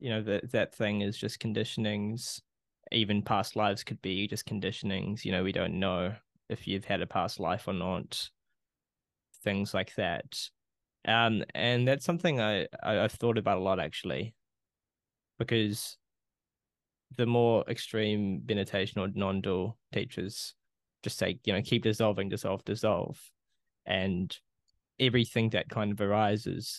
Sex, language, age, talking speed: male, English, 20-39, 150 wpm